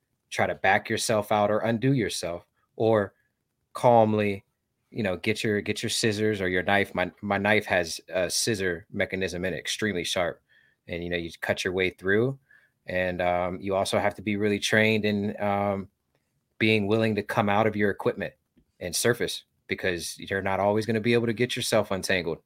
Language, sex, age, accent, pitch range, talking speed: English, male, 30-49, American, 95-110 Hz, 190 wpm